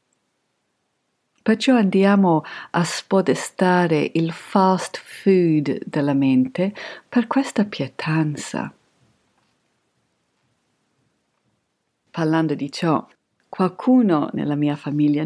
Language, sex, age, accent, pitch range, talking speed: Italian, female, 50-69, native, 150-210 Hz, 75 wpm